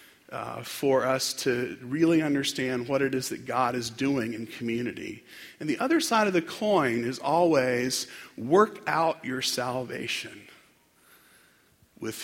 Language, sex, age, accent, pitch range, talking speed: English, male, 40-59, American, 125-170 Hz, 140 wpm